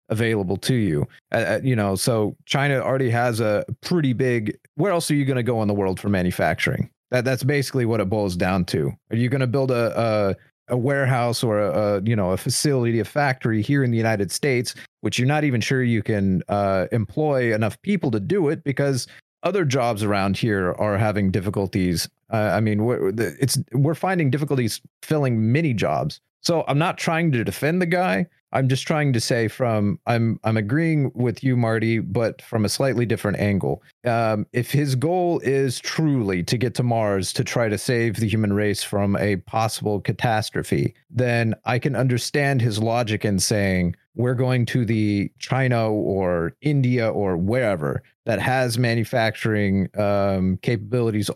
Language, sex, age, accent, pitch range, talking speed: English, male, 30-49, American, 105-130 Hz, 185 wpm